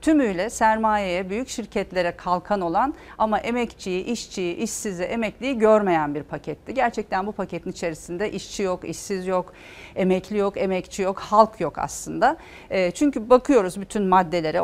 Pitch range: 180-225 Hz